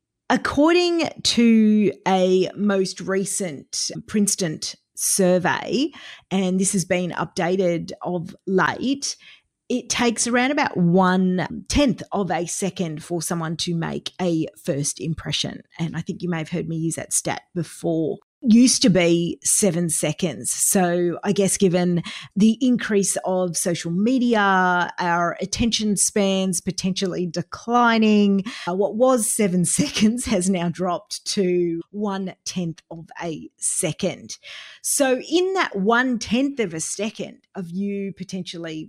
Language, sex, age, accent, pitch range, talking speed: English, female, 30-49, Australian, 175-215 Hz, 130 wpm